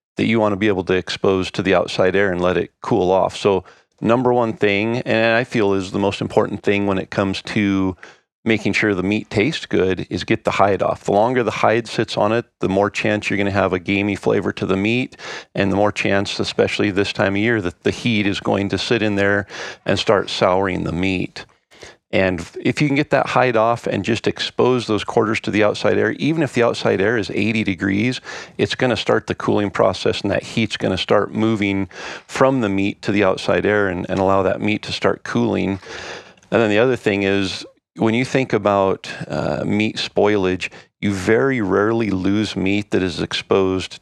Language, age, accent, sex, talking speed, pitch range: English, 40-59, American, male, 220 wpm, 95-110 Hz